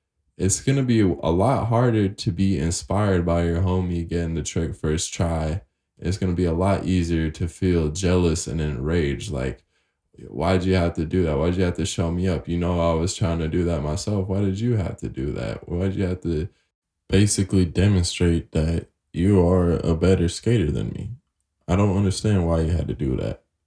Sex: male